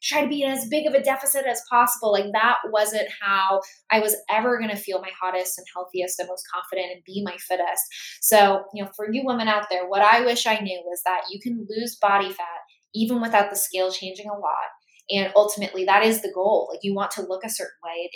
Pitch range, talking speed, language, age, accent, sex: 190-245 Hz, 245 wpm, English, 10-29, American, female